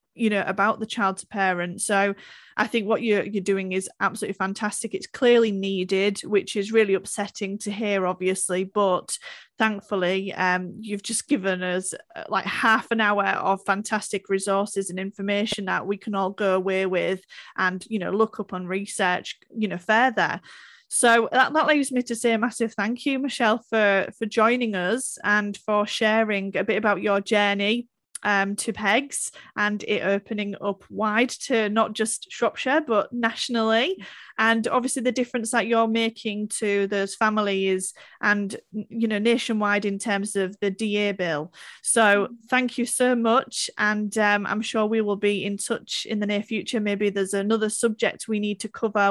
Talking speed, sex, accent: 175 wpm, female, British